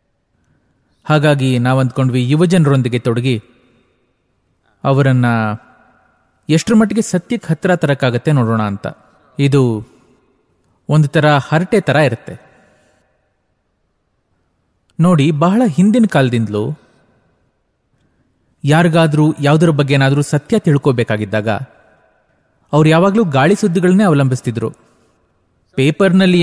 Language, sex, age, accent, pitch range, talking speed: English, male, 30-49, Indian, 125-180 Hz, 75 wpm